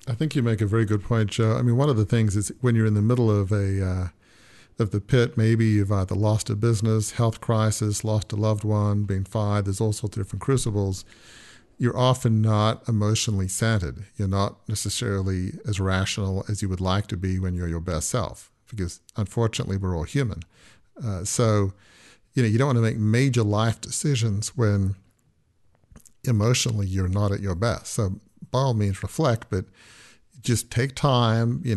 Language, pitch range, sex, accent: English, 100-115 Hz, male, American